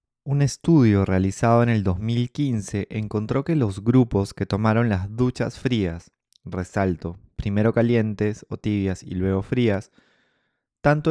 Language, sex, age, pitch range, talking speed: Spanish, male, 20-39, 100-120 Hz, 130 wpm